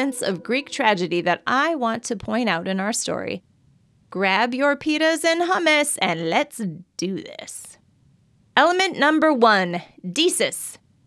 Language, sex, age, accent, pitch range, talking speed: English, female, 30-49, American, 195-275 Hz, 135 wpm